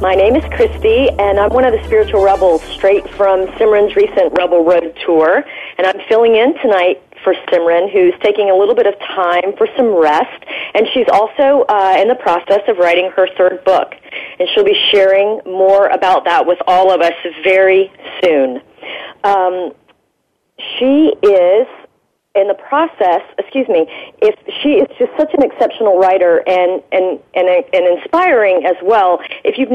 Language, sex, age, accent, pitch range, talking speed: English, female, 40-59, American, 180-255 Hz, 170 wpm